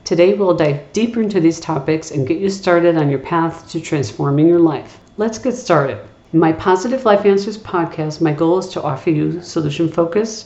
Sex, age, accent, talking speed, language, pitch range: female, 50-69, American, 195 wpm, English, 150-185 Hz